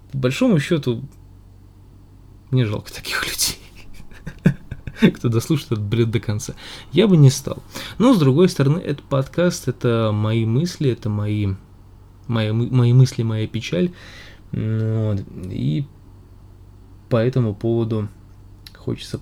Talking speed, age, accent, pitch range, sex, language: 120 wpm, 20-39, native, 100-125 Hz, male, Russian